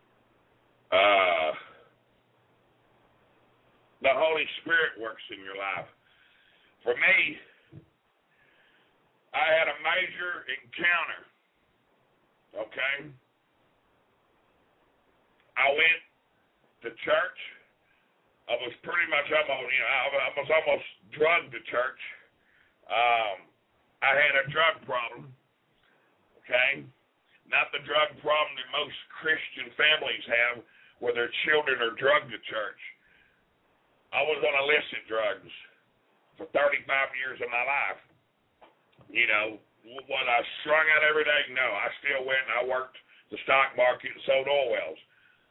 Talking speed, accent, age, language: 120 wpm, American, 50-69, English